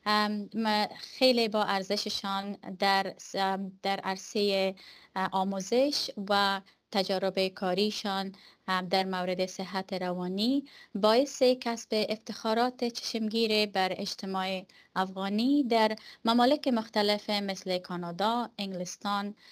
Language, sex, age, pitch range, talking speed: Persian, female, 20-39, 190-235 Hz, 85 wpm